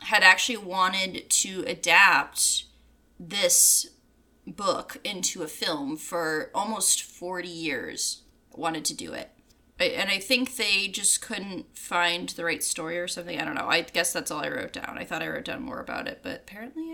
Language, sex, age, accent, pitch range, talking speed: English, female, 20-39, American, 180-265 Hz, 175 wpm